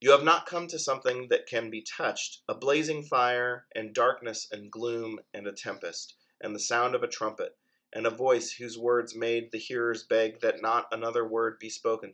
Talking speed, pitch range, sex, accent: 205 wpm, 110-170 Hz, male, American